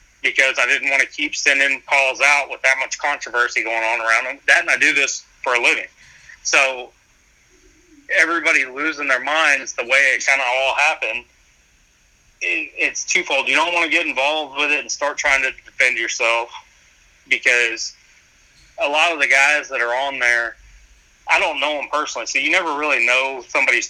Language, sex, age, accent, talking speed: English, male, 30-49, American, 185 wpm